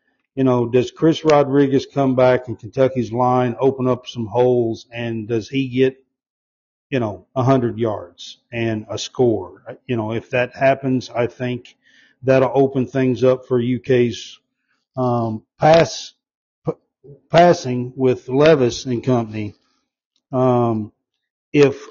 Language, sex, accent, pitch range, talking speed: English, male, American, 115-135 Hz, 135 wpm